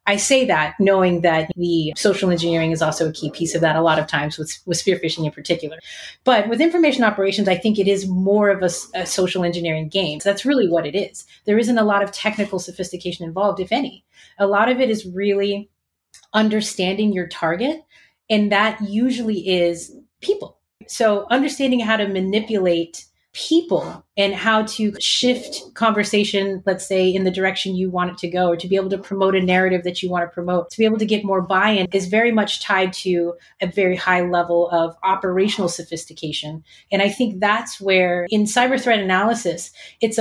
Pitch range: 180-220 Hz